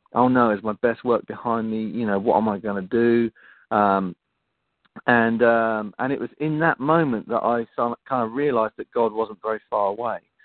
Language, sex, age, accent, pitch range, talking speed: English, male, 40-59, British, 110-130 Hz, 205 wpm